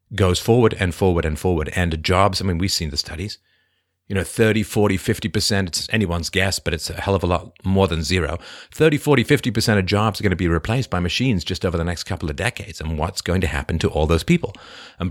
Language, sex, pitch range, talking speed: English, male, 85-105 Hz, 240 wpm